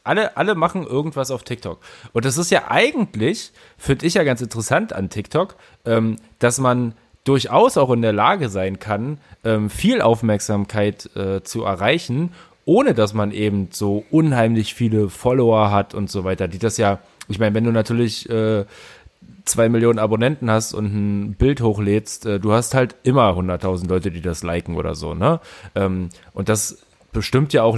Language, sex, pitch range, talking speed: German, male, 100-120 Hz, 175 wpm